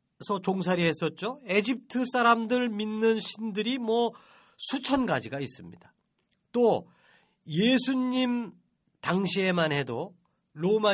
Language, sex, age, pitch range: Korean, male, 40-59, 175-245 Hz